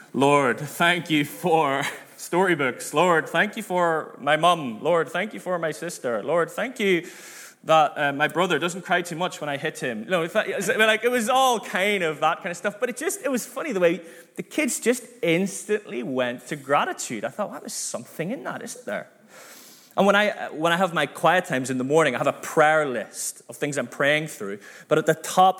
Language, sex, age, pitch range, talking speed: English, male, 20-39, 145-195 Hz, 225 wpm